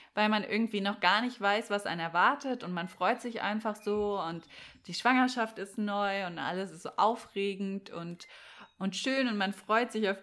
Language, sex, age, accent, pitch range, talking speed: German, female, 20-39, German, 195-230 Hz, 200 wpm